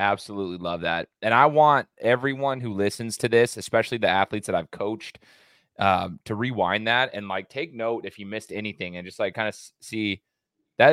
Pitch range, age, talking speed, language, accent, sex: 100-120 Hz, 20-39, 200 wpm, English, American, male